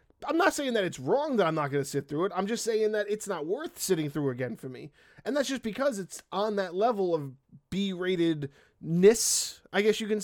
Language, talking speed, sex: English, 240 wpm, male